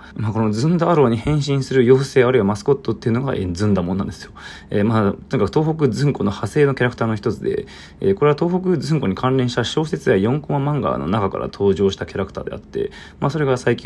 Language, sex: Japanese, male